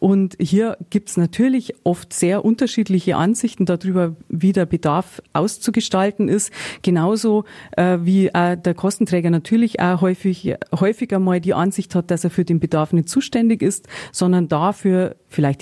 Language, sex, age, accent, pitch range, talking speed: German, female, 30-49, German, 170-200 Hz, 155 wpm